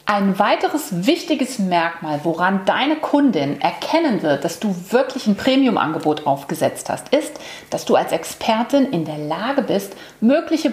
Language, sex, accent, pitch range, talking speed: German, female, German, 190-250 Hz, 145 wpm